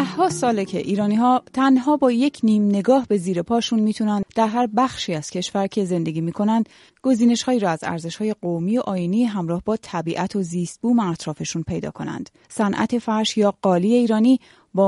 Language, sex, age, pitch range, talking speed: Persian, female, 30-49, 180-230 Hz, 185 wpm